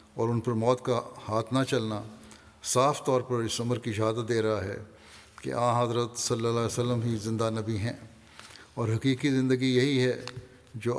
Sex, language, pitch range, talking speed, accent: male, English, 110-130 Hz, 165 wpm, Indian